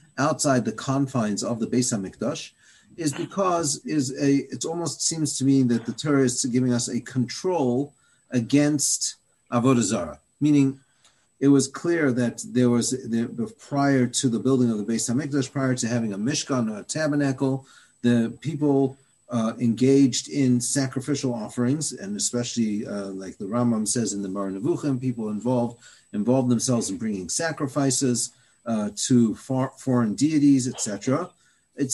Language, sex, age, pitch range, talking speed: English, male, 40-59, 120-145 Hz, 155 wpm